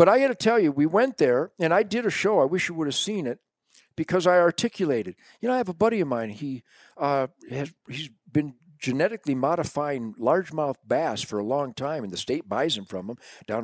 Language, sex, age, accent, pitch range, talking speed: English, male, 50-69, American, 135-200 Hz, 235 wpm